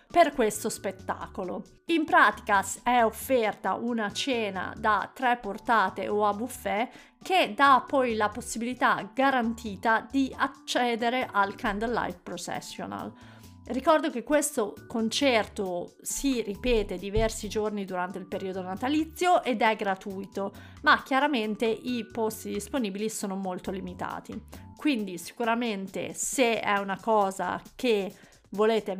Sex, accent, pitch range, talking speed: female, native, 200-250 Hz, 120 wpm